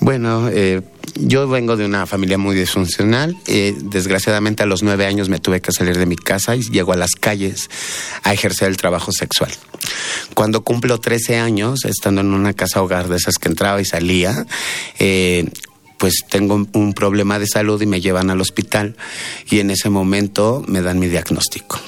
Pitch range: 95-110 Hz